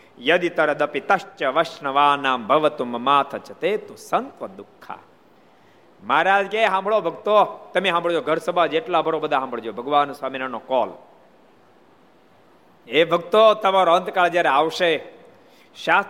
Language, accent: Gujarati, native